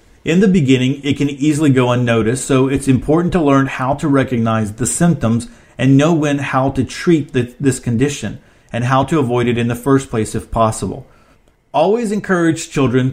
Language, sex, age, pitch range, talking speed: English, male, 40-59, 120-145 Hz, 185 wpm